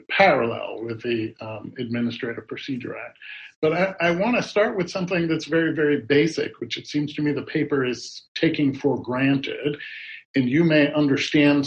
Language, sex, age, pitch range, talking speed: English, male, 50-69, 135-165 Hz, 170 wpm